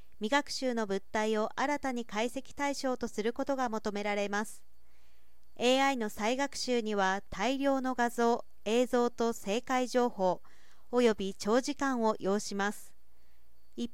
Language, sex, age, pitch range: Japanese, female, 40-59, 205-270 Hz